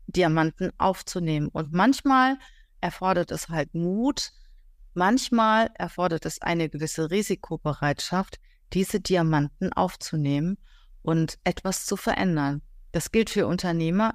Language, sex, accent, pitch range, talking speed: German, female, German, 170-215 Hz, 105 wpm